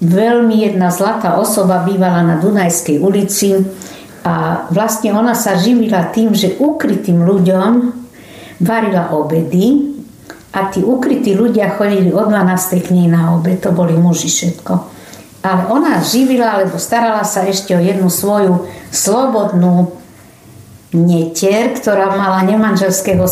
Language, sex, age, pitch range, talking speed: Slovak, female, 60-79, 180-220 Hz, 125 wpm